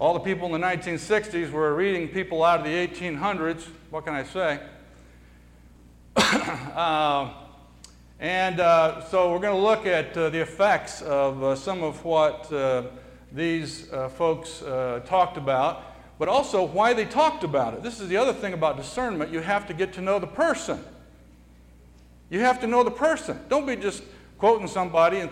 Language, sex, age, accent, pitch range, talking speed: English, male, 50-69, American, 150-200 Hz, 175 wpm